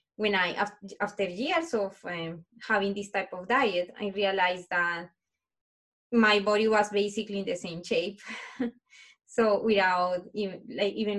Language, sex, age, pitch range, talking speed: English, female, 20-39, 190-240 Hz, 135 wpm